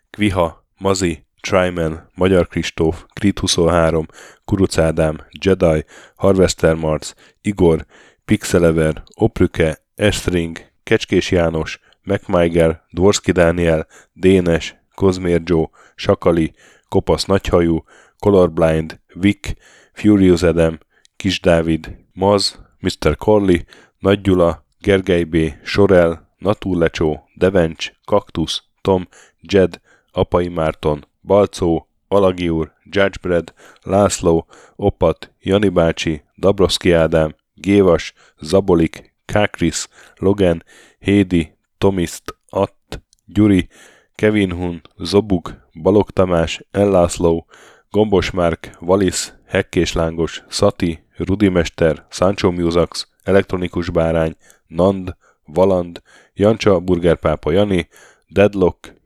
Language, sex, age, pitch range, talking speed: Hungarian, male, 10-29, 80-95 Hz, 90 wpm